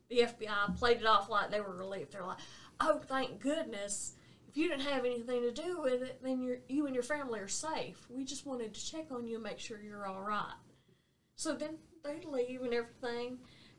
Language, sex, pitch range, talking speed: English, female, 220-280 Hz, 215 wpm